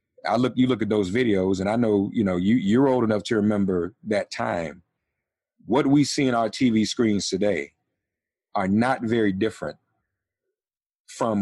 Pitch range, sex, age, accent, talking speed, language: 105-130 Hz, male, 40-59, American, 175 wpm, English